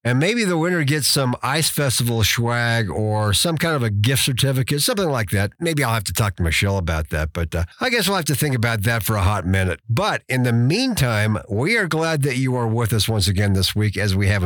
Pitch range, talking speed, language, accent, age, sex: 110-155 Hz, 255 wpm, English, American, 50-69, male